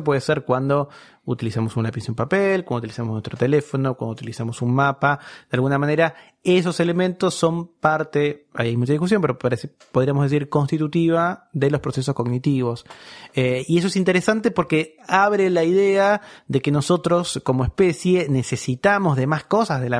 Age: 30-49